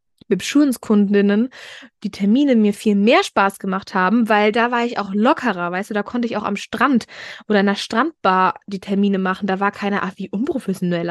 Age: 20-39